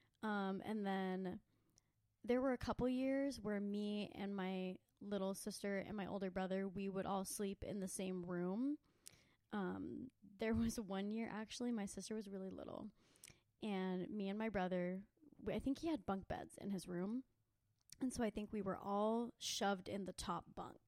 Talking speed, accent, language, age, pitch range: 180 wpm, American, English, 20-39, 190-235 Hz